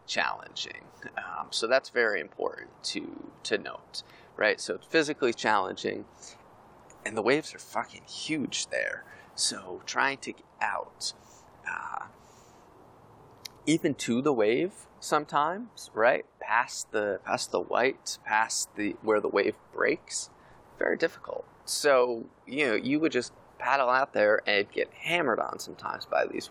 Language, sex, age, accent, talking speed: English, male, 20-39, American, 145 wpm